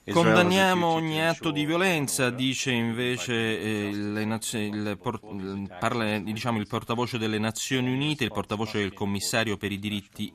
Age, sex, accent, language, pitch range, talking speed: 30-49, male, native, Italian, 100-125 Hz, 150 wpm